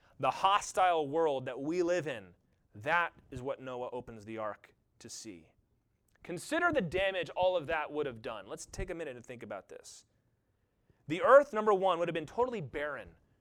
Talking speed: 190 wpm